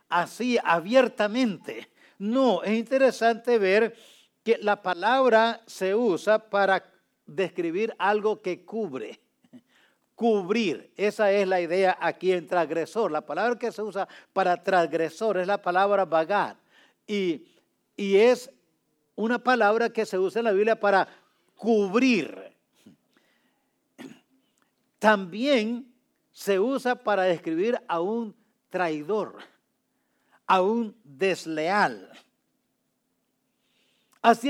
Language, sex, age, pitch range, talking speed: English, male, 50-69, 185-230 Hz, 105 wpm